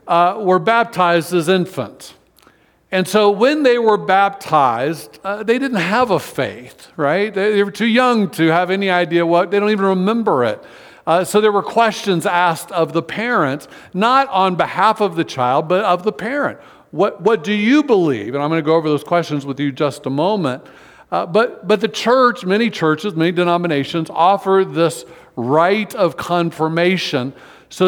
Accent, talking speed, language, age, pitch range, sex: American, 180 wpm, English, 60-79, 155-200 Hz, male